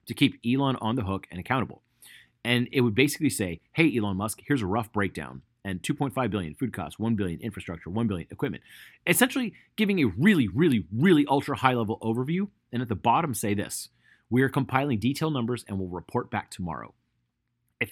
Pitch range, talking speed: 100-135 Hz, 195 wpm